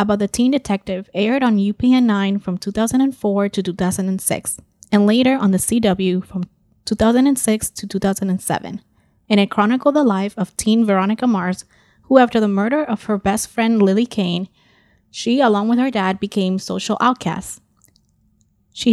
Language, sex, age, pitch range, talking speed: English, female, 20-39, 190-225 Hz, 150 wpm